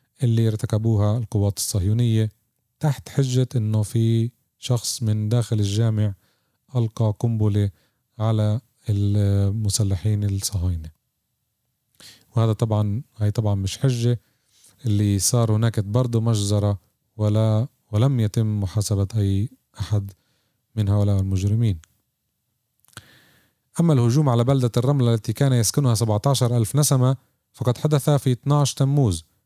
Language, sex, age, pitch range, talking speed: Arabic, male, 30-49, 105-125 Hz, 105 wpm